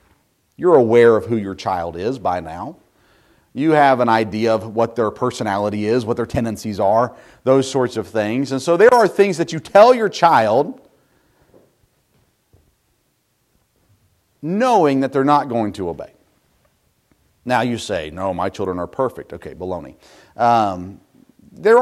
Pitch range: 110-150 Hz